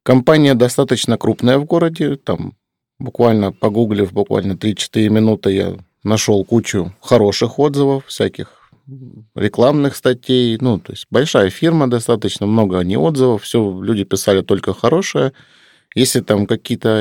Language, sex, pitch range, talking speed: Russian, male, 100-125 Hz, 125 wpm